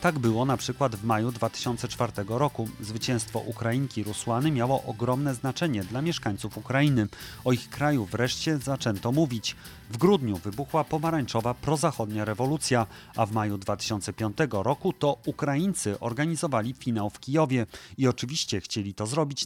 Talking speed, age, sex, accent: 140 wpm, 30-49, male, native